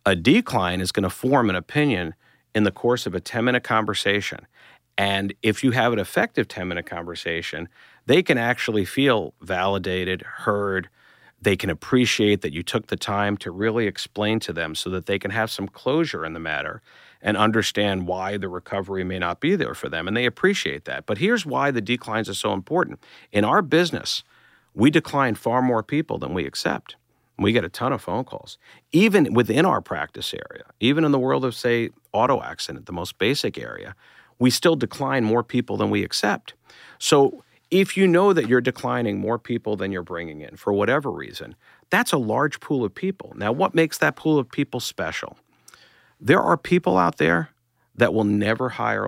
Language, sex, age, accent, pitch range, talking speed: English, male, 50-69, American, 100-135 Hz, 190 wpm